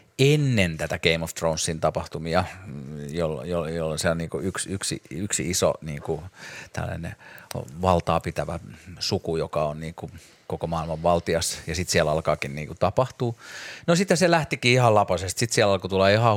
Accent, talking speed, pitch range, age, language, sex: native, 145 wpm, 85-110 Hz, 30-49, Finnish, male